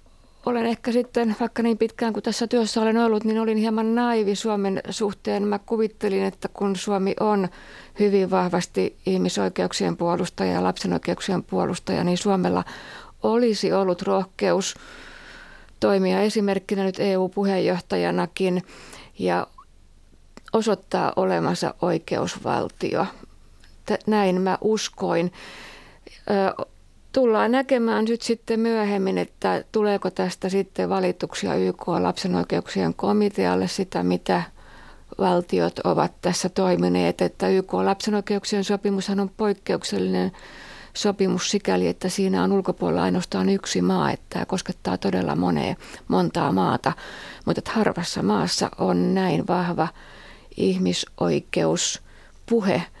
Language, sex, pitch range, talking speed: Finnish, female, 180-220 Hz, 110 wpm